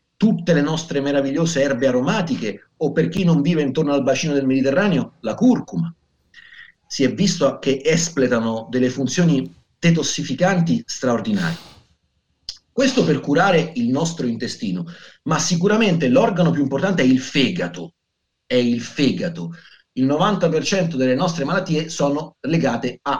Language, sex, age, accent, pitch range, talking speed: Italian, male, 40-59, native, 145-205 Hz, 135 wpm